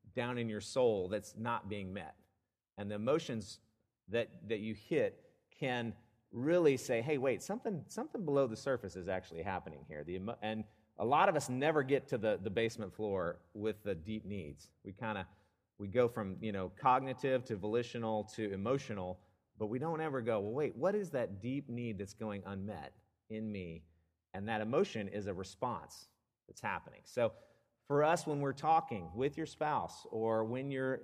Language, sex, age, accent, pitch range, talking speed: English, male, 40-59, American, 105-135 Hz, 190 wpm